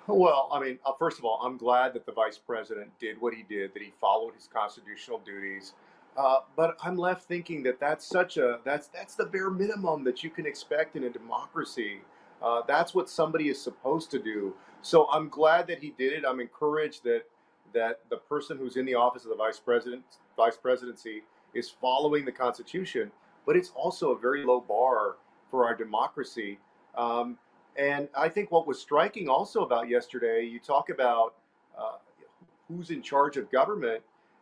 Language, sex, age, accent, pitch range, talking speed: English, male, 40-59, American, 125-180 Hz, 185 wpm